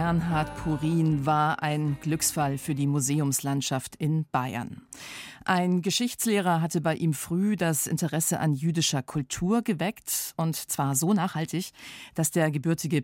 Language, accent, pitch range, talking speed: German, German, 145-185 Hz, 135 wpm